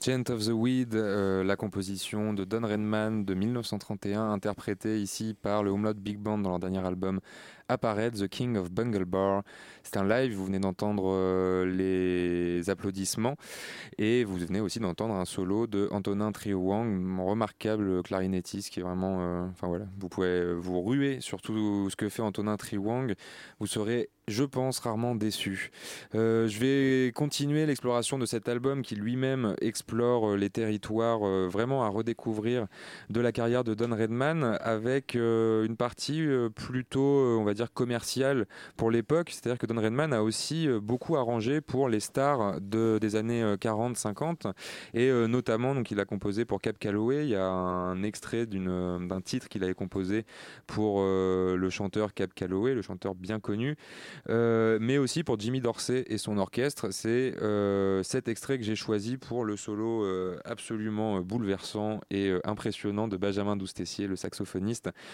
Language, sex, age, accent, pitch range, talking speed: French, male, 20-39, French, 95-120 Hz, 170 wpm